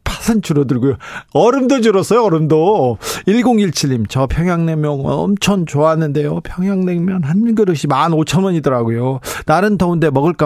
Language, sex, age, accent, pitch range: Korean, male, 40-59, native, 145-210 Hz